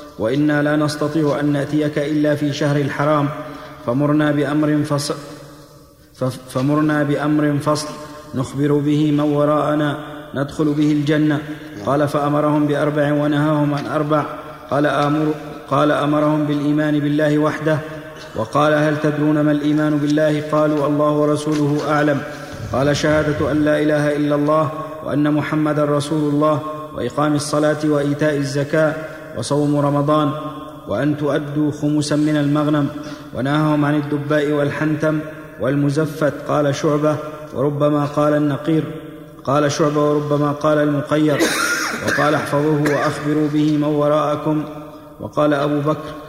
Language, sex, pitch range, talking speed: Arabic, male, 145-150 Hz, 115 wpm